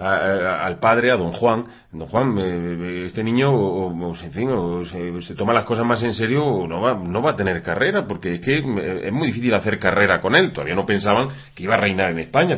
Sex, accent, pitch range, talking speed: male, Spanish, 105-145 Hz, 210 wpm